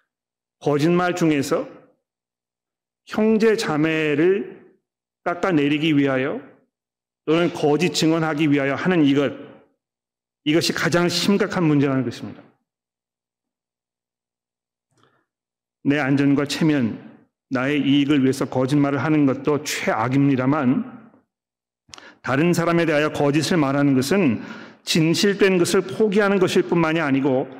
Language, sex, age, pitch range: Korean, male, 40-59, 135-175 Hz